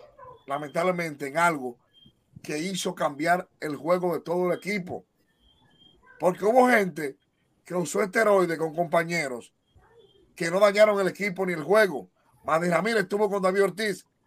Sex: male